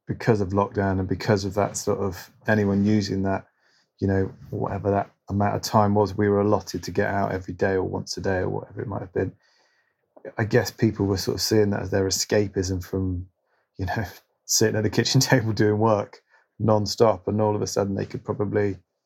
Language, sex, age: English, male, 30-49